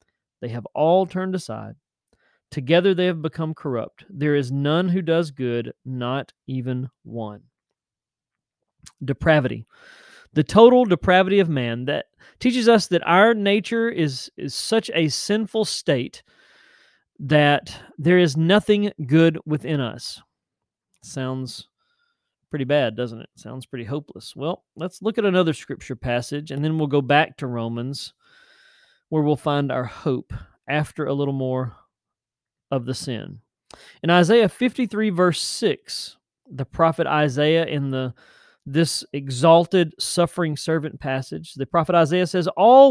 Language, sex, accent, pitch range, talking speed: English, male, American, 140-190 Hz, 140 wpm